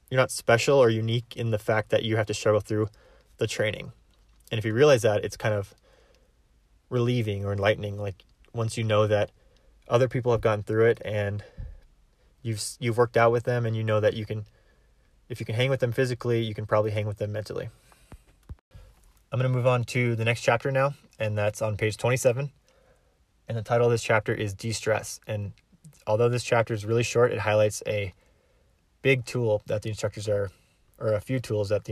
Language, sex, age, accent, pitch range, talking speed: English, male, 20-39, American, 105-120 Hz, 205 wpm